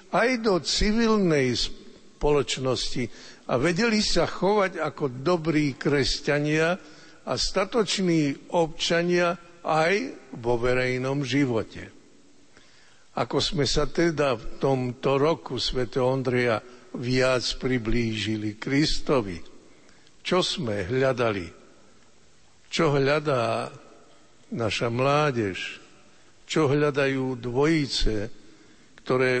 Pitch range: 125-170 Hz